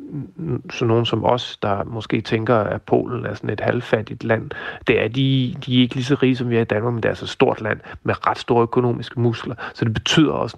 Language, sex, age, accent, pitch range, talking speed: Danish, male, 40-59, native, 115-135 Hz, 245 wpm